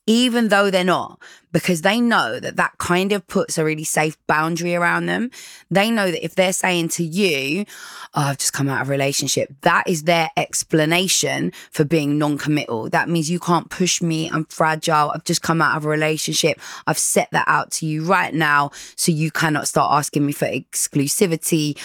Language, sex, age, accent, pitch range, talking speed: English, female, 20-39, British, 150-175 Hz, 195 wpm